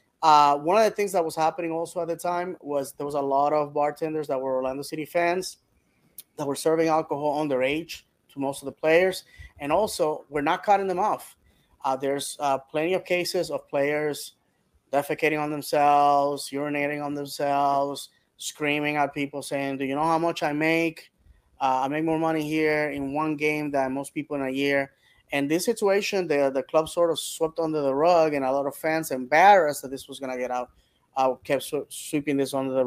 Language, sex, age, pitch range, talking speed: English, male, 20-39, 140-160 Hz, 205 wpm